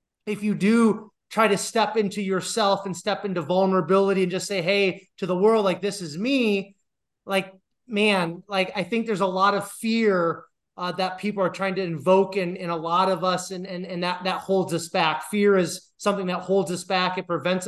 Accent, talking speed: American, 215 wpm